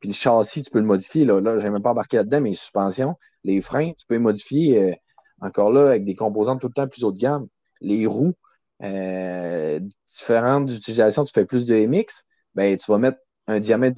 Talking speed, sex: 230 wpm, male